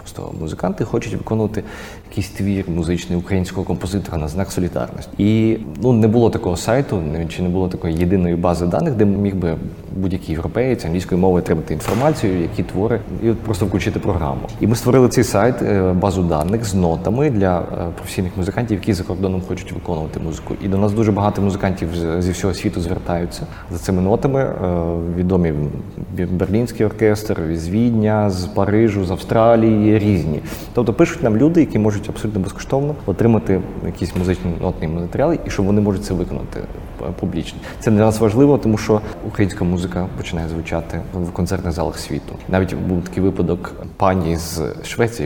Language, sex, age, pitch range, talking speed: Ukrainian, male, 30-49, 85-110 Hz, 160 wpm